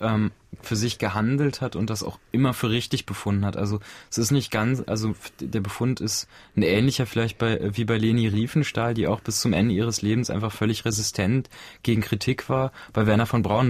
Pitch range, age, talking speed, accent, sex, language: 105-120 Hz, 20-39, 200 wpm, German, male, German